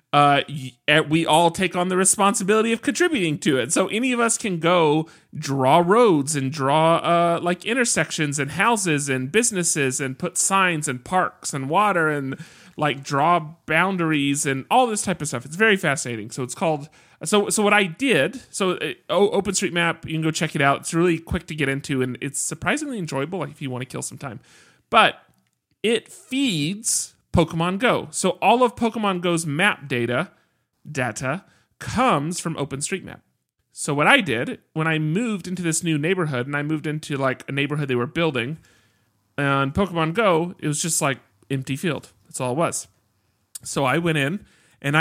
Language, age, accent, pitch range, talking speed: English, 30-49, American, 140-180 Hz, 185 wpm